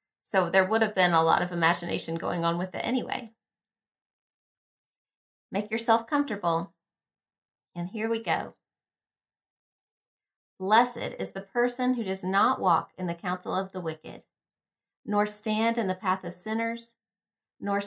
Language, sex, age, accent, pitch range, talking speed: English, female, 30-49, American, 180-230 Hz, 145 wpm